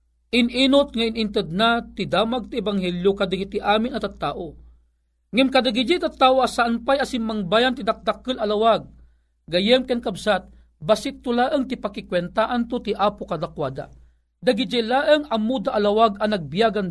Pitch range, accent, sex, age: 165-240 Hz, native, male, 40-59